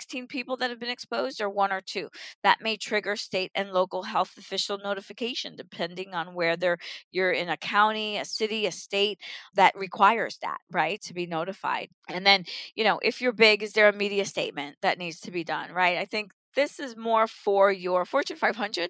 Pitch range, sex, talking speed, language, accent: 180-225 Hz, female, 205 wpm, English, American